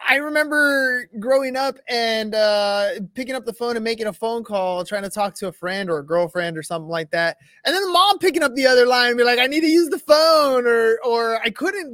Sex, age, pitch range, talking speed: male, 20-39, 190-250 Hz, 245 wpm